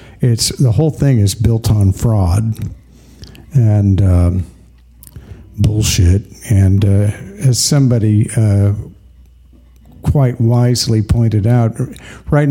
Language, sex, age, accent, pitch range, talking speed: English, male, 50-69, American, 100-135 Hz, 100 wpm